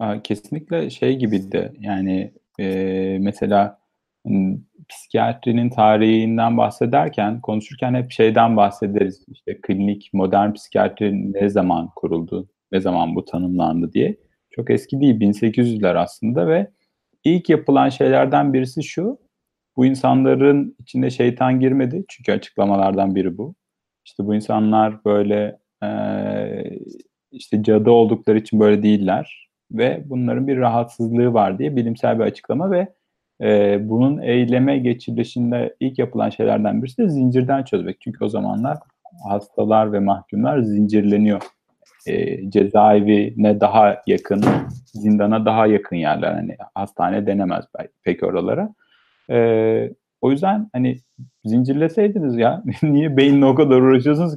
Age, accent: 40-59, native